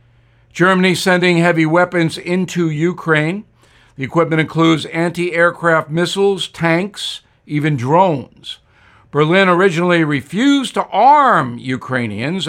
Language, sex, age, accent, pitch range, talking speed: English, male, 60-79, American, 160-185 Hz, 100 wpm